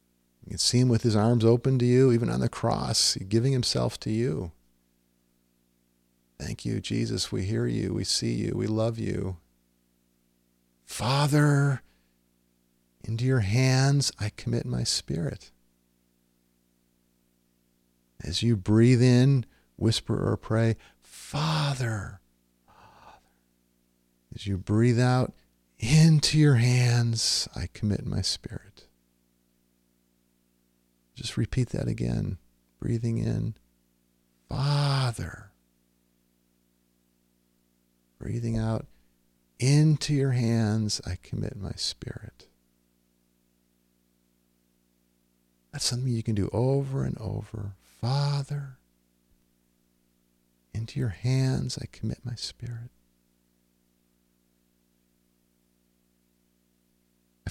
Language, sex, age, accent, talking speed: English, male, 40-59, American, 95 wpm